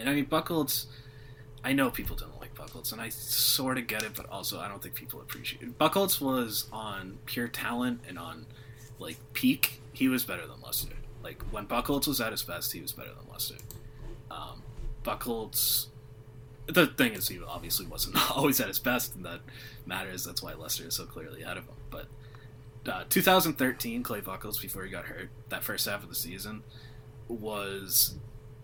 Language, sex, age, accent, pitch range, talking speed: English, male, 20-39, American, 110-130 Hz, 190 wpm